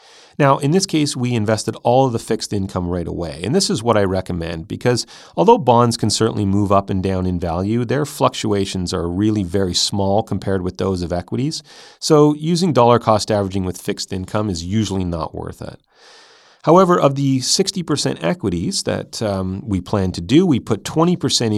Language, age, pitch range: English, 30-49, 95-120 Hz